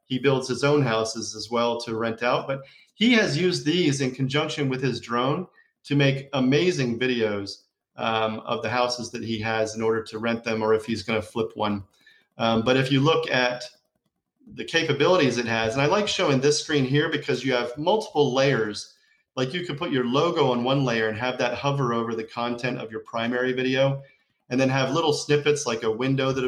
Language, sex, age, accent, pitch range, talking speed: English, male, 30-49, American, 115-140 Hz, 210 wpm